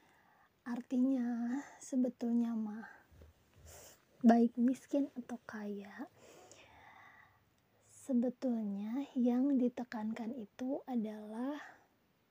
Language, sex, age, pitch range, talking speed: Indonesian, female, 20-39, 220-255 Hz, 60 wpm